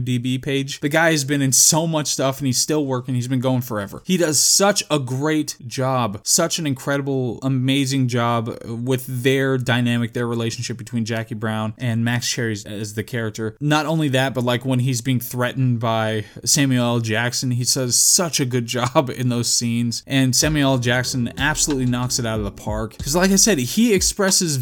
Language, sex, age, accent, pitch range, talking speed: English, male, 20-39, American, 120-150 Hz, 200 wpm